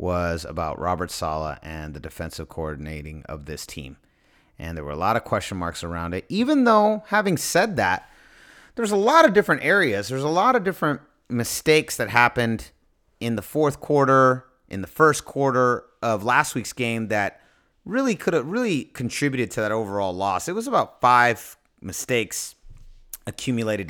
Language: English